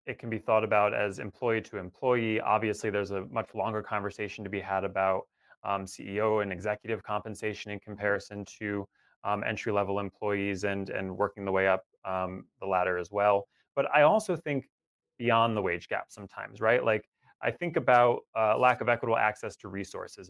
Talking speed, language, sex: 185 wpm, English, male